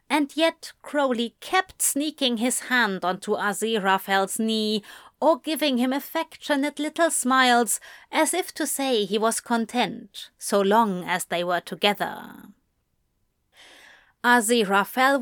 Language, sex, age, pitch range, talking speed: English, female, 30-49, 205-285 Hz, 120 wpm